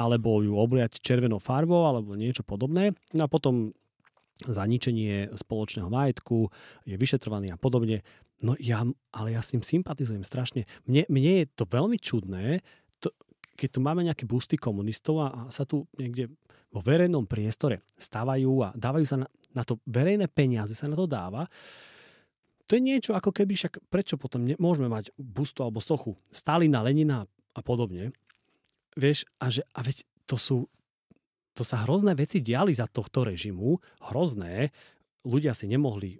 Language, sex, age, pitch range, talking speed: Slovak, male, 40-59, 115-150 Hz, 155 wpm